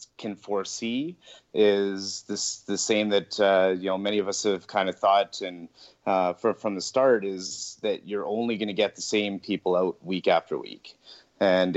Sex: male